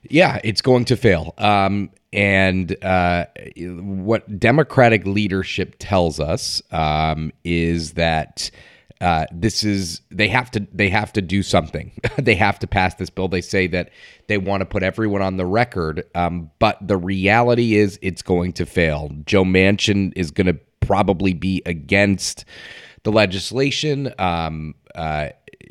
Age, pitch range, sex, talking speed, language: 30-49, 85-105 Hz, male, 150 wpm, English